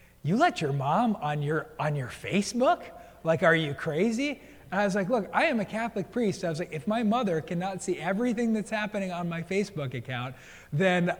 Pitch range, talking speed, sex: 135-175 Hz, 210 wpm, male